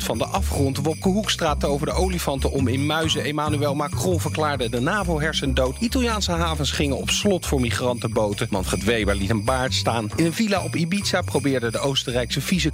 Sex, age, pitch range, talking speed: male, 40-59, 105-160 Hz, 180 wpm